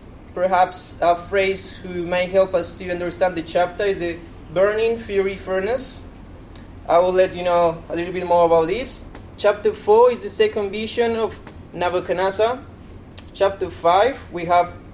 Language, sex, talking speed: English, male, 155 wpm